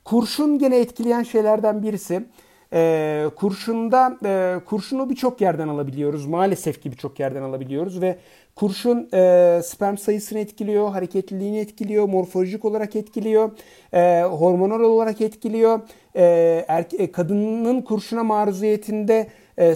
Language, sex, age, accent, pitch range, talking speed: Turkish, male, 50-69, native, 155-215 Hz, 120 wpm